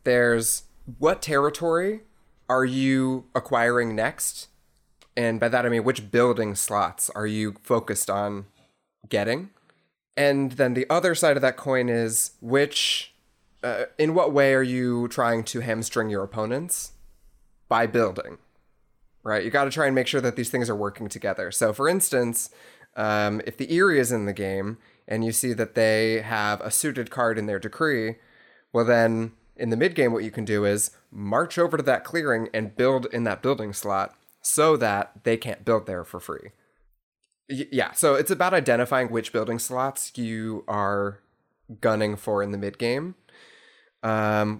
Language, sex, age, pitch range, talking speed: English, male, 20-39, 105-130 Hz, 170 wpm